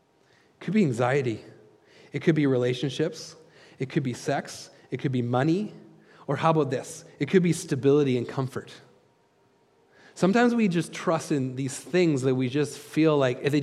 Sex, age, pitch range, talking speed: male, 30-49, 130-170 Hz, 170 wpm